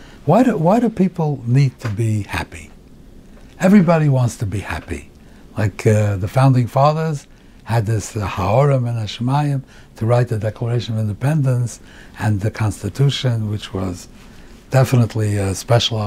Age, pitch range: 60-79, 105-145 Hz